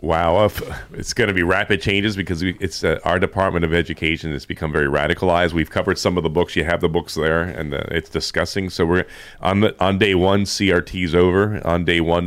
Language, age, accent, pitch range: English, 30-49, American, 80-95 Hz